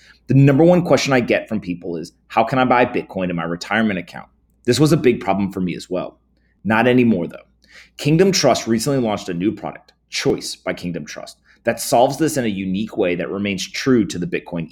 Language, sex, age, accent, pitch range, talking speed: English, male, 30-49, American, 100-135 Hz, 220 wpm